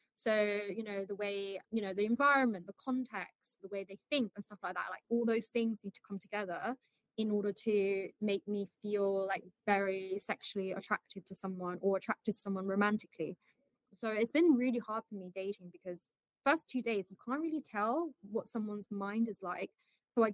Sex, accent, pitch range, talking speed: female, British, 200-240 Hz, 200 wpm